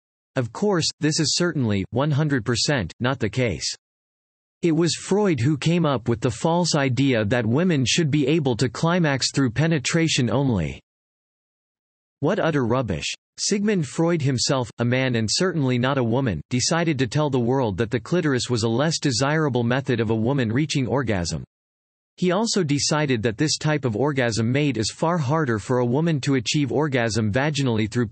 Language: English